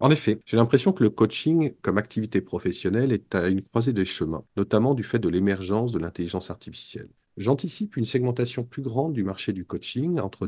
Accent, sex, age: French, male, 50-69